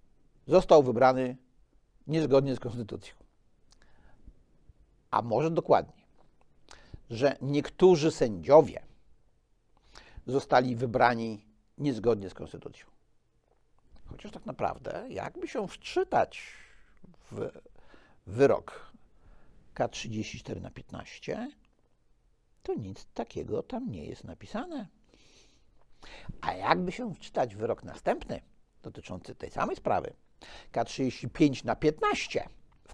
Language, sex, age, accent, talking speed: Polish, male, 60-79, native, 90 wpm